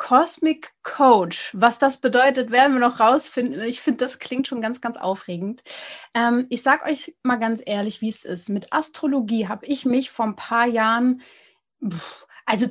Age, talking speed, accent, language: 30-49, 175 wpm, German, German